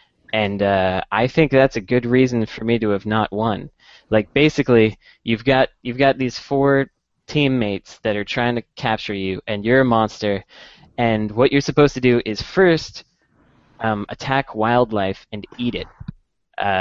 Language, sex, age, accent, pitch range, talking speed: English, male, 10-29, American, 105-125 Hz, 170 wpm